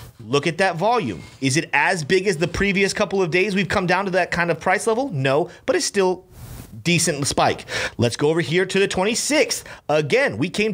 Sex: male